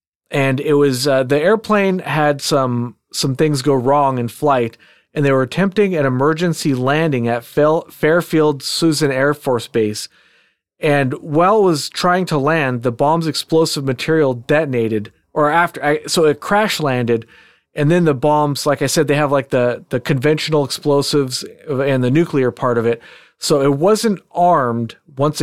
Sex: male